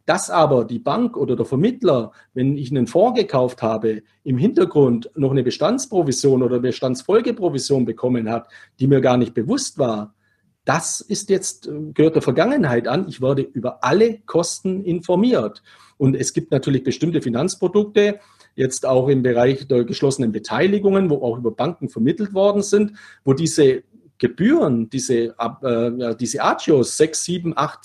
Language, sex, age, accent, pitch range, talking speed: German, male, 40-59, German, 125-190 Hz, 155 wpm